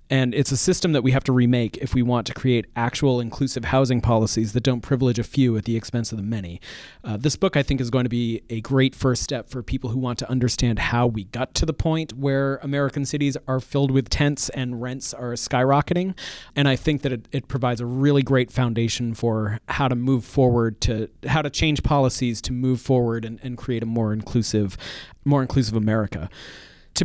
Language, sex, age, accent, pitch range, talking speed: English, male, 40-59, American, 120-145 Hz, 220 wpm